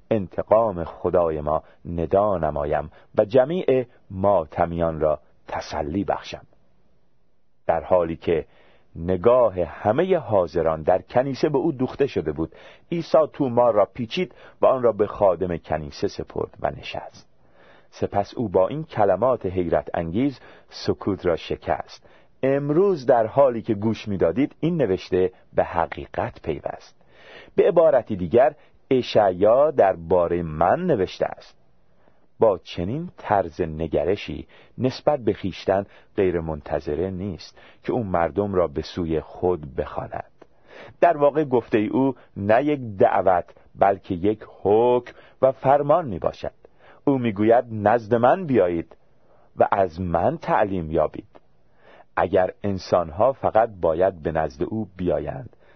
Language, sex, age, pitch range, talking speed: Persian, male, 40-59, 85-130 Hz, 125 wpm